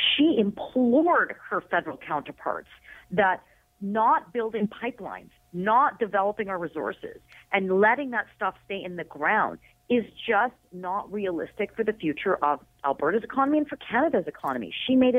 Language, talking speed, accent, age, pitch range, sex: English, 145 wpm, American, 40-59, 180-255 Hz, female